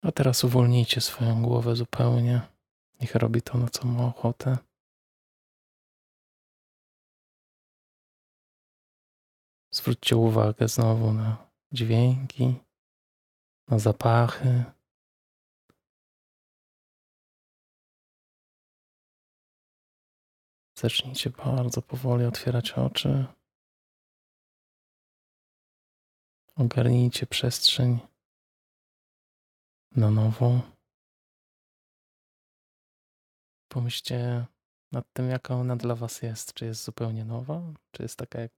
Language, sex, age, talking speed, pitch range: Polish, male, 20-39, 70 wpm, 115-125 Hz